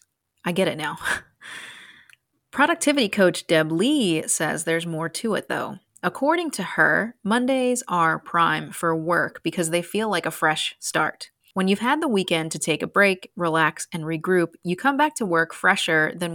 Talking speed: 175 wpm